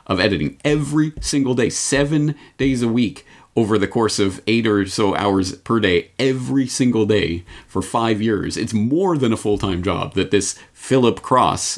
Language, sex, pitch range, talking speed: English, male, 85-105 Hz, 180 wpm